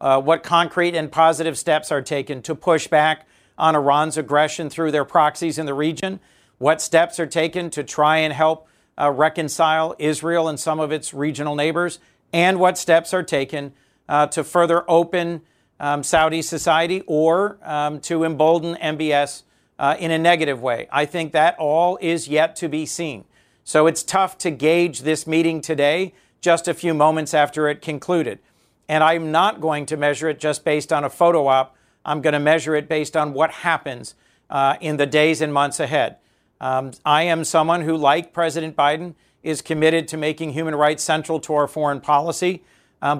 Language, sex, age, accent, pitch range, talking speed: English, male, 50-69, American, 150-165 Hz, 185 wpm